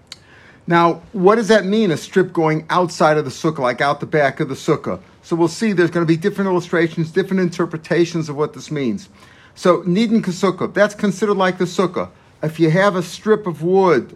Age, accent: 50-69, American